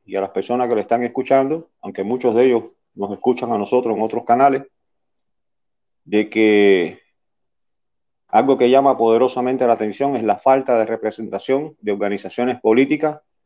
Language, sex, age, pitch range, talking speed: Spanish, male, 40-59, 105-130 Hz, 155 wpm